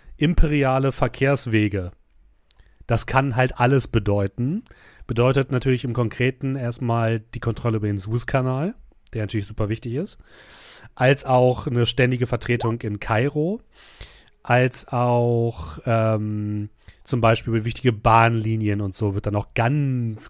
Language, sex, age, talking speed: German, male, 40-59, 125 wpm